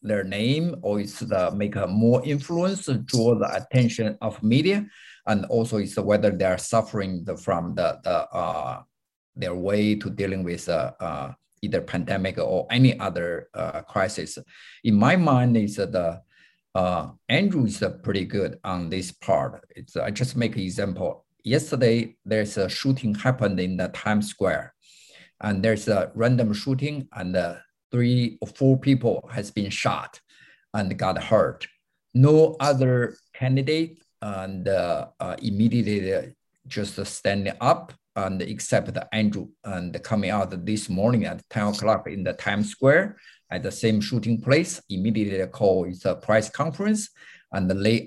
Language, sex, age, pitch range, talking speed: English, male, 50-69, 100-130 Hz, 155 wpm